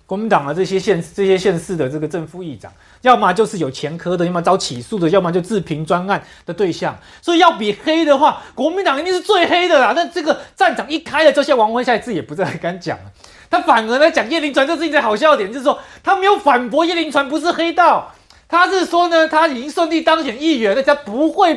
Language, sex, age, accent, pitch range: Chinese, male, 30-49, native, 215-330 Hz